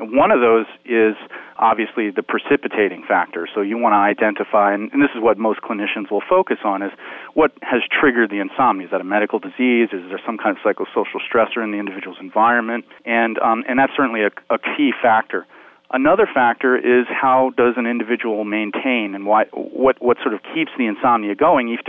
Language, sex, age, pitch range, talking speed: English, male, 40-59, 105-130 Hz, 195 wpm